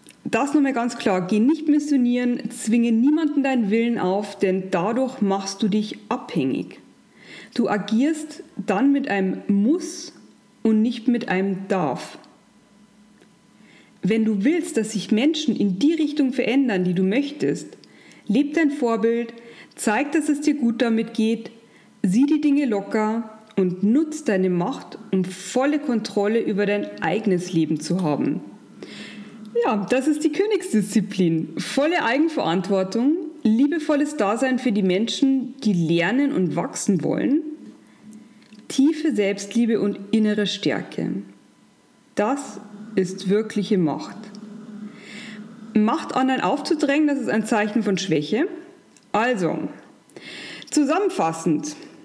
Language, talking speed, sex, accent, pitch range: German, 120 wpm, female, German, 205-275 Hz